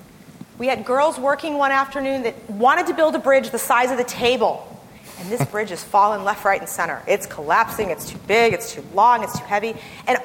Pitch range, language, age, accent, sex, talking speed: 230-335 Hz, English, 30-49, American, female, 225 wpm